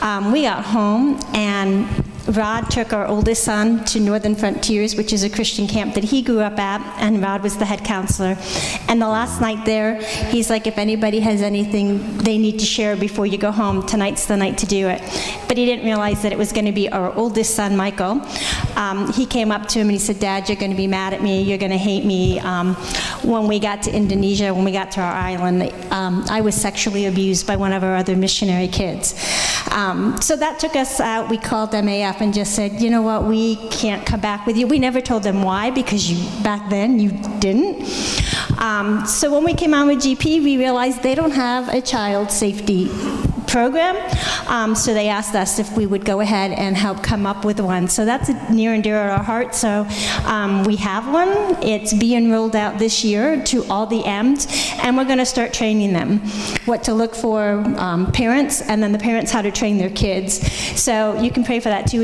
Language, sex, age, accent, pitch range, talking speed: English, female, 40-59, American, 200-230 Hz, 225 wpm